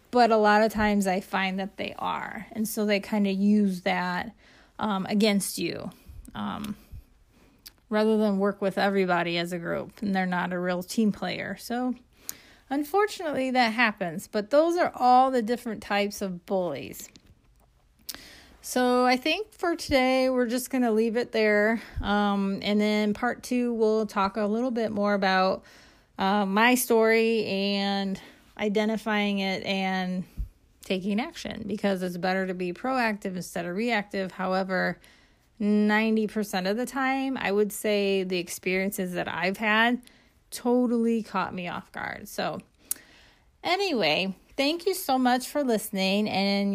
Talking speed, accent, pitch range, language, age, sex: 150 wpm, American, 195-245 Hz, English, 30-49, female